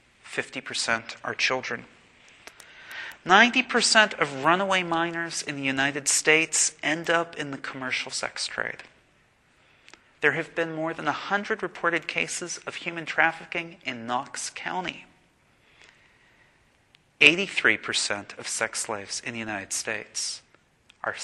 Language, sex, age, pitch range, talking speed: English, male, 40-59, 125-165 Hz, 115 wpm